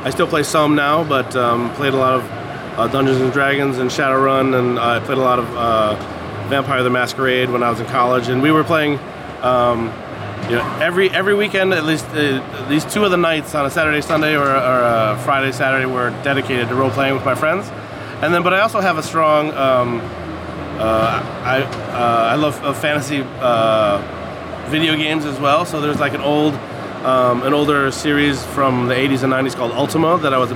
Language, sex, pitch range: Danish, male, 120-150 Hz